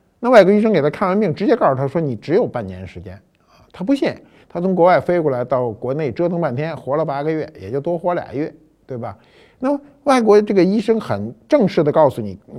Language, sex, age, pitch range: Chinese, male, 50-69, 130-195 Hz